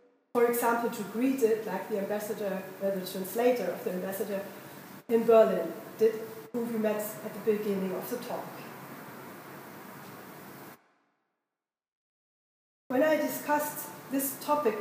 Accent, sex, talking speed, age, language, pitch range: German, female, 125 wpm, 30-49, English, 215-250 Hz